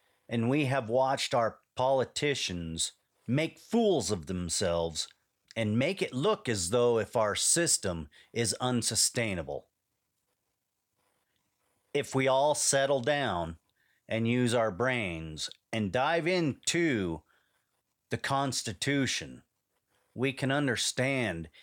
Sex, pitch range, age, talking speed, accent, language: male, 100-140 Hz, 40-59, 105 wpm, American, English